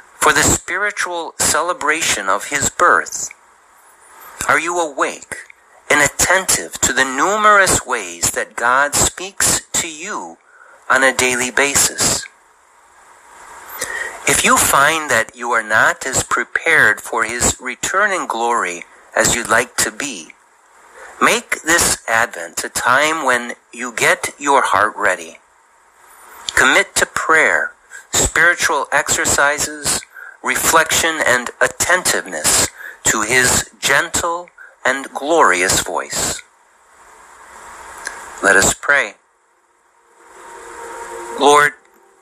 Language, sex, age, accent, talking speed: English, male, 50-69, American, 105 wpm